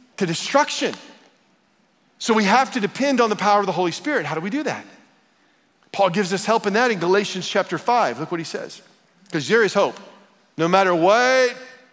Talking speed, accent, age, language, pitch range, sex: 195 wpm, American, 40-59, English, 195-250 Hz, male